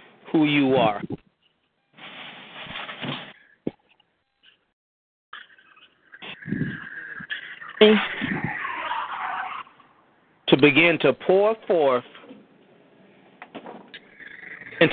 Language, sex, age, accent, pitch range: English, male, 40-59, American, 155-200 Hz